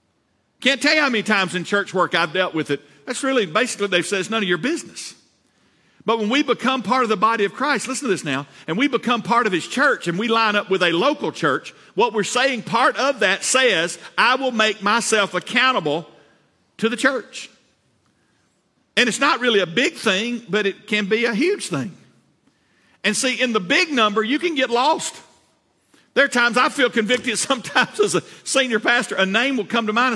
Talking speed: 215 wpm